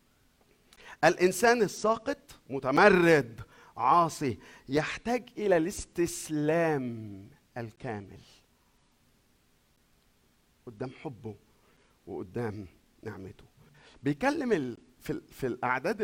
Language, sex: Arabic, male